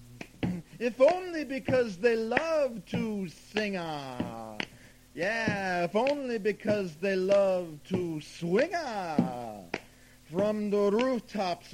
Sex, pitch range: male, 125-175 Hz